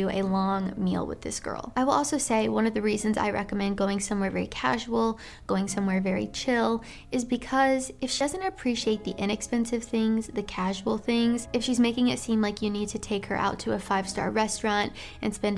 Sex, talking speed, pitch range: female, 210 wpm, 200-235 Hz